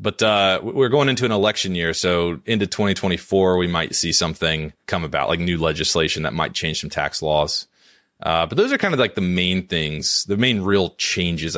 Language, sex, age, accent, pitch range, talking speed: English, male, 30-49, American, 80-100 Hz, 205 wpm